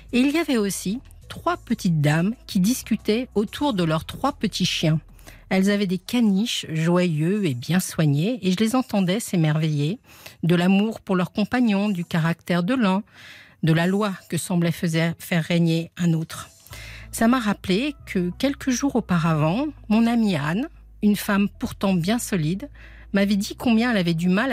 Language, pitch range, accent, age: French, 165-215 Hz, French, 50-69